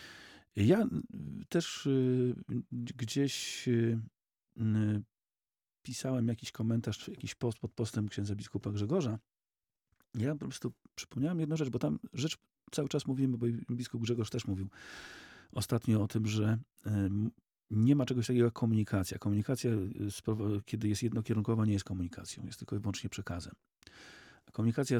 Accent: native